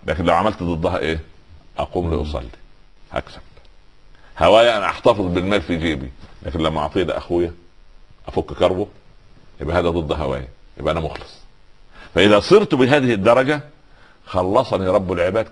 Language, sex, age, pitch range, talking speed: Arabic, male, 50-69, 80-110 Hz, 130 wpm